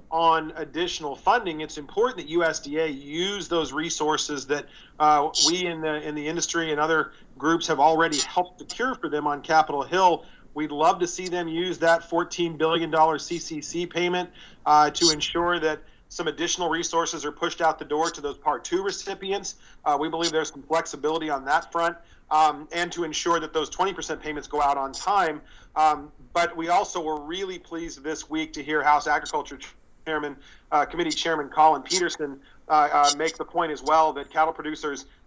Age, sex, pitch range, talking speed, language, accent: 40-59, male, 150-165 Hz, 180 wpm, English, American